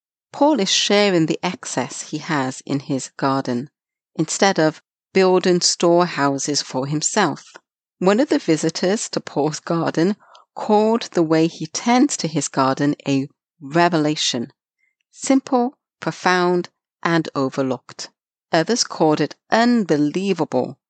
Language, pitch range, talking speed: English, 150-200 Hz, 120 wpm